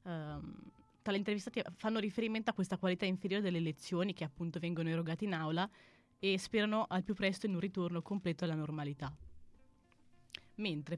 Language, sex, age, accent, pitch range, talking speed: Italian, female, 20-39, native, 160-200 Hz, 155 wpm